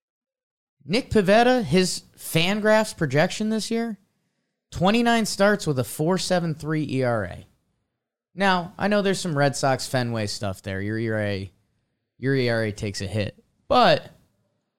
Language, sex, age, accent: English, male, 20-39, American